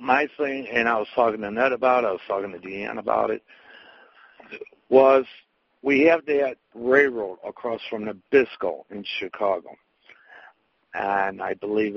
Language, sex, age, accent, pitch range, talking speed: English, male, 60-79, American, 110-135 Hz, 150 wpm